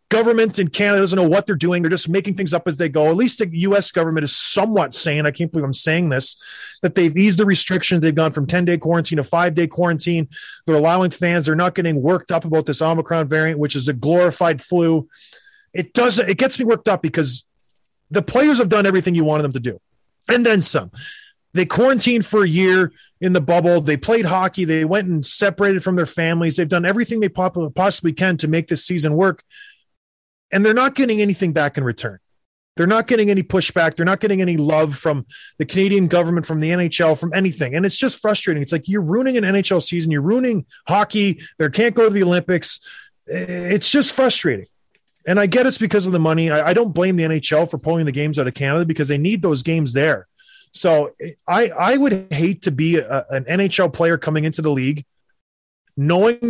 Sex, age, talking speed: male, 30-49, 215 wpm